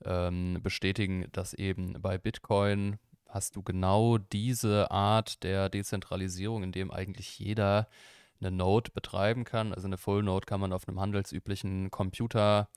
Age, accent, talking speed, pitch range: 20-39, German, 135 wpm, 95-110 Hz